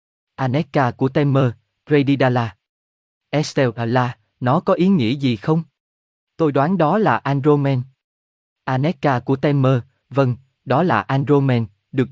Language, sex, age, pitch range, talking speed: Vietnamese, male, 20-39, 110-150 Hz, 115 wpm